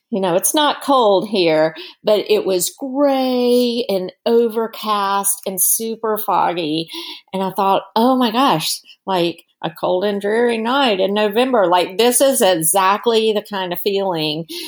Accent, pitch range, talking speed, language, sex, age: American, 180-230 Hz, 150 wpm, English, female, 40-59